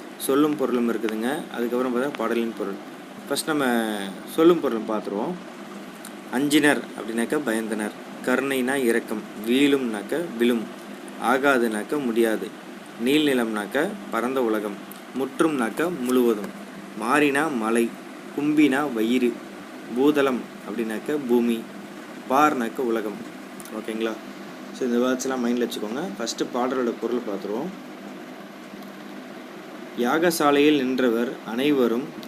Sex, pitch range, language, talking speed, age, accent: male, 115-140 Hz, Tamil, 90 wpm, 30-49, native